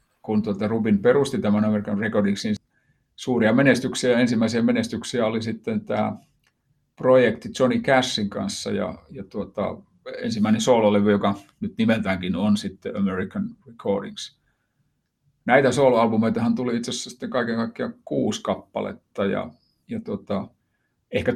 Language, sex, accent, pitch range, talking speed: Finnish, male, native, 105-130 Hz, 120 wpm